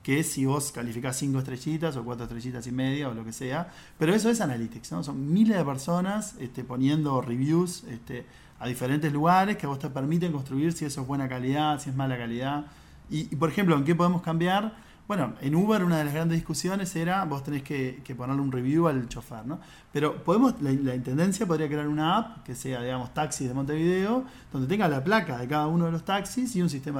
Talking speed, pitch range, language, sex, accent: 225 wpm, 130-170 Hz, Spanish, male, Argentinian